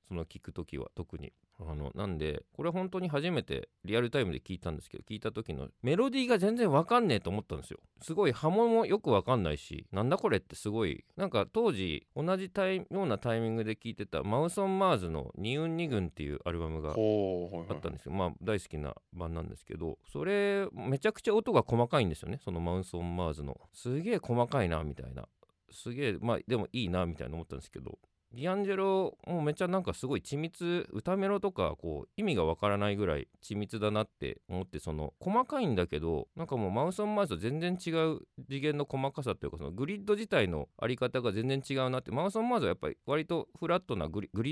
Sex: male